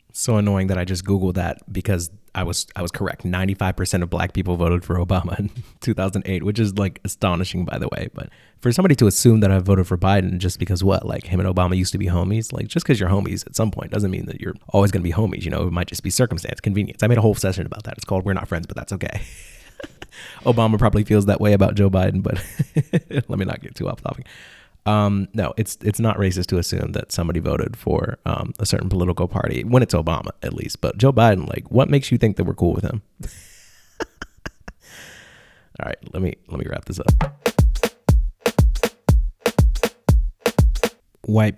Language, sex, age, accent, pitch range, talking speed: English, male, 20-39, American, 95-120 Hz, 220 wpm